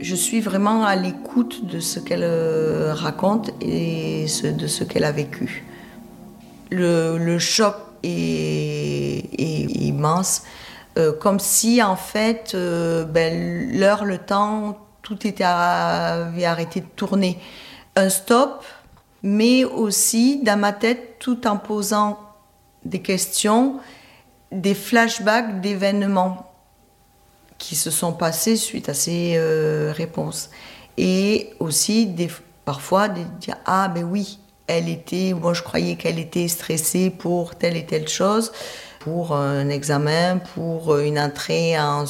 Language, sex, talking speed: French, female, 130 wpm